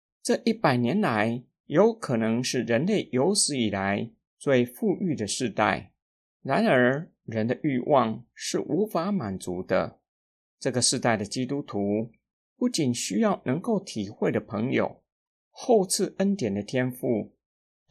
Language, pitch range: Chinese, 115-185 Hz